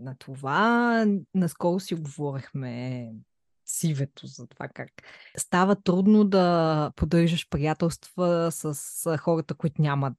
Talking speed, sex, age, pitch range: 105 wpm, female, 20-39, 145-200 Hz